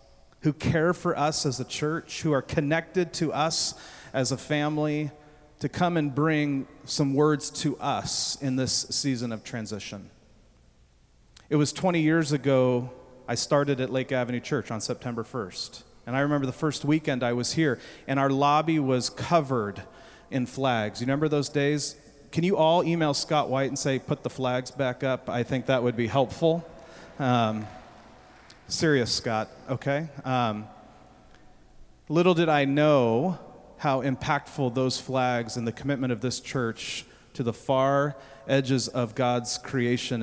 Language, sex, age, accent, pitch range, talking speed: English, male, 40-59, American, 120-145 Hz, 160 wpm